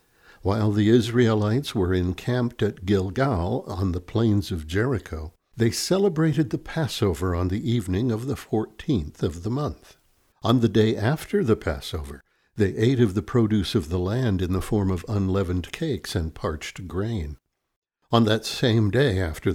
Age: 60-79